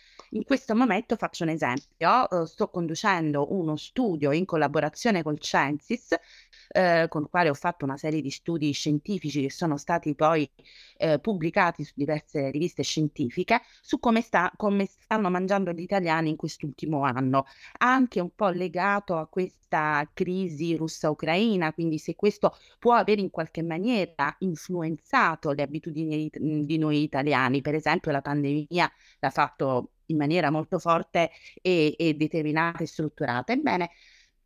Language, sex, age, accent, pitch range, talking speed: Italian, female, 30-49, native, 150-205 Hz, 145 wpm